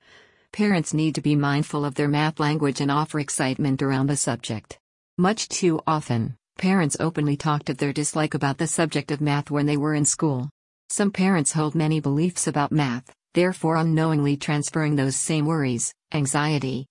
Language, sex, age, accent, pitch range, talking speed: English, female, 50-69, American, 140-165 Hz, 170 wpm